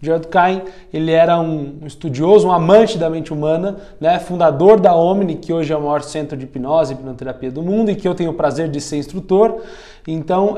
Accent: Brazilian